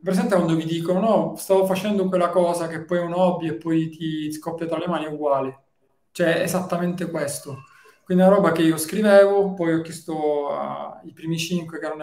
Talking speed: 215 wpm